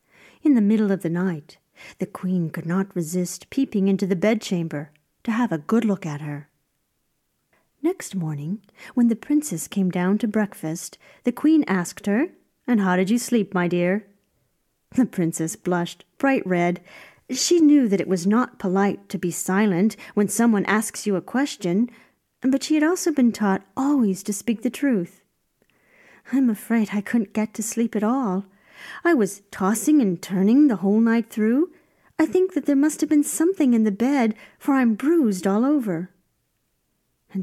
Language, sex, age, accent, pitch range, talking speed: English, female, 40-59, American, 185-240 Hz, 175 wpm